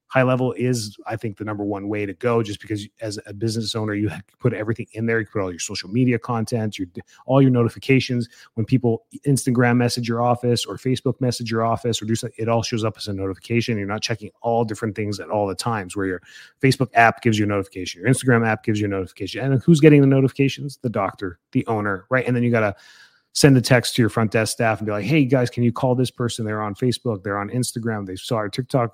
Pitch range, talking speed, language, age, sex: 105-125 Hz, 255 wpm, English, 30-49, male